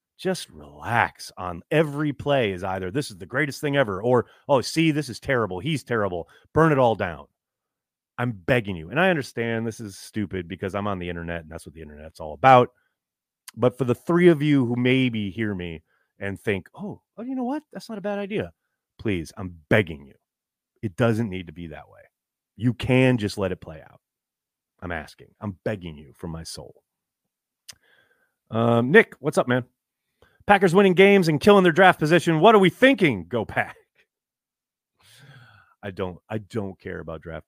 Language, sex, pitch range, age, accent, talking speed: English, male, 95-155 Hz, 30-49, American, 190 wpm